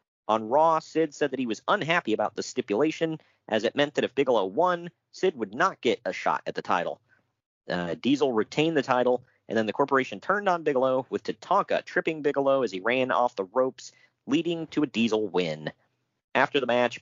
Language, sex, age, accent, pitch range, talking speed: English, male, 40-59, American, 105-140 Hz, 200 wpm